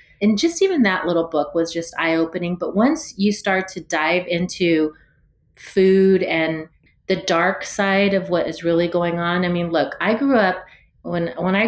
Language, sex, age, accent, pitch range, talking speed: English, female, 30-49, American, 170-205 Hz, 185 wpm